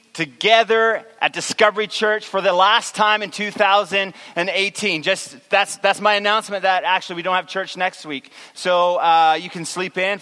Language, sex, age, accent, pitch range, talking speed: English, male, 30-49, American, 185-220 Hz, 170 wpm